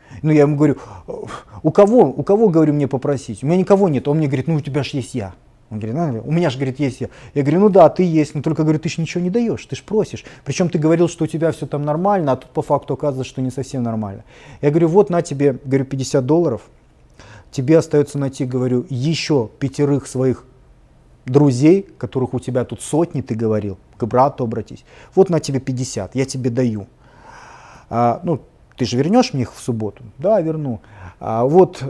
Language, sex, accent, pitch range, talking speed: Russian, male, native, 120-155 Hz, 210 wpm